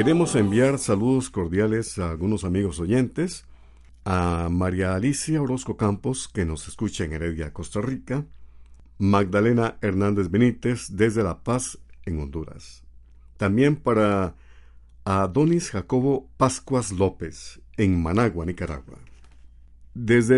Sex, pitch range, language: male, 85-120 Hz, Spanish